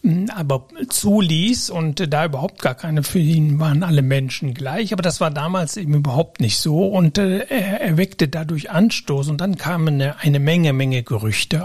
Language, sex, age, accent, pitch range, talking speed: German, male, 60-79, German, 145-195 Hz, 175 wpm